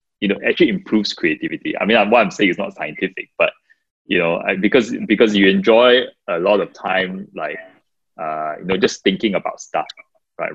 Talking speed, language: 190 wpm, English